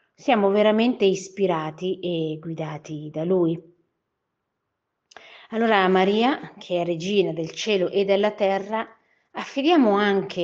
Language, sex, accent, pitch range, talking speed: Italian, female, native, 175-210 Hz, 115 wpm